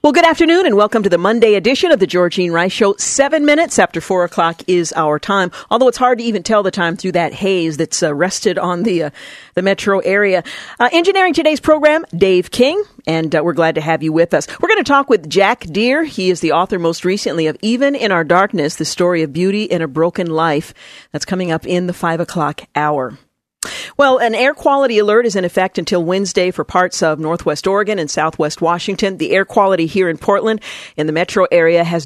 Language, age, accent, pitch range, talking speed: English, 50-69, American, 165-215 Hz, 225 wpm